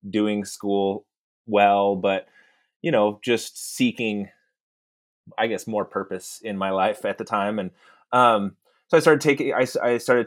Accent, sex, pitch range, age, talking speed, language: American, male, 95-110 Hz, 20-39, 160 wpm, English